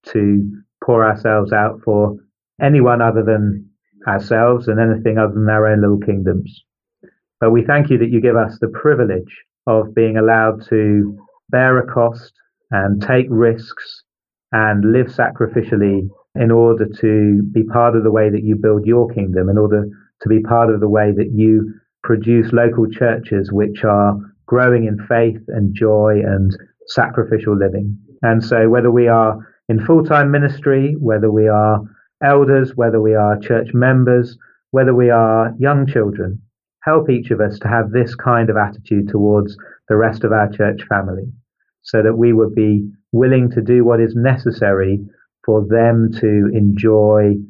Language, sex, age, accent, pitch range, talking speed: English, male, 30-49, British, 105-120 Hz, 165 wpm